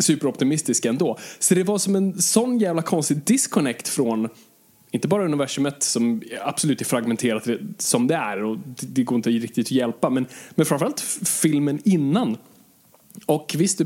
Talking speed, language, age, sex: 165 wpm, Swedish, 20-39, male